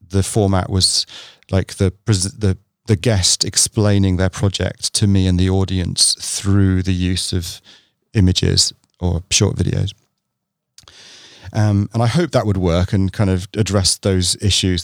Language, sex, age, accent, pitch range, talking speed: English, male, 30-49, British, 95-110 Hz, 150 wpm